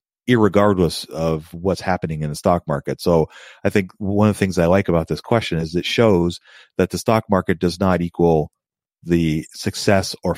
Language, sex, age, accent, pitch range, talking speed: English, male, 40-59, American, 85-100 Hz, 190 wpm